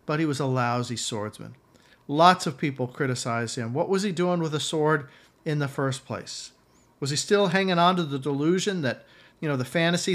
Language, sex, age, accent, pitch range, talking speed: English, male, 50-69, American, 135-180 Hz, 205 wpm